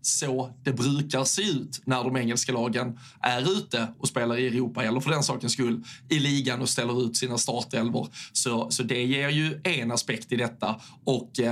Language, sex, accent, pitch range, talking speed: Swedish, male, native, 125-140 Hz, 195 wpm